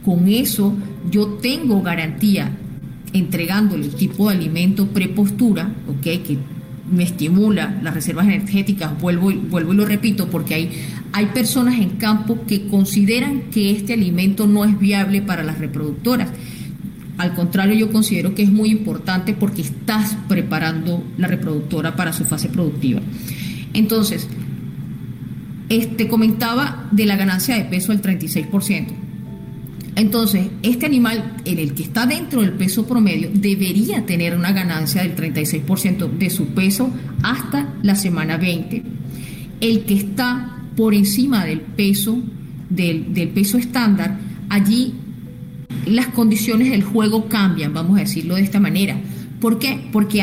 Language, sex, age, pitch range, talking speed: Portuguese, female, 40-59, 180-220 Hz, 140 wpm